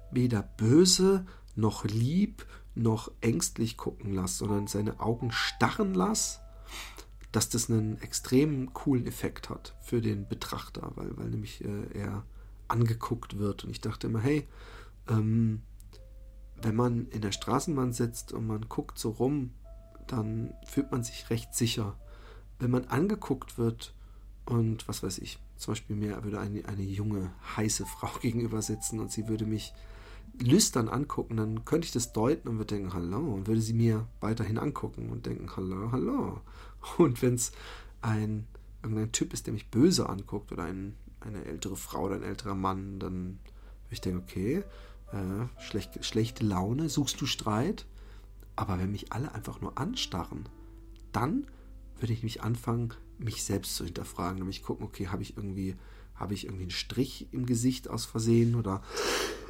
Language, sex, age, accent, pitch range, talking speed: German, male, 40-59, German, 100-120 Hz, 160 wpm